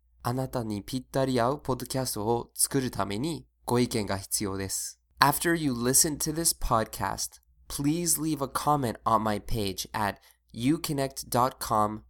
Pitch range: 100-135 Hz